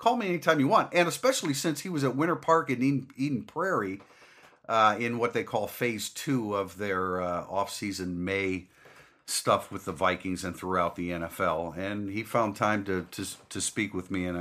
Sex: male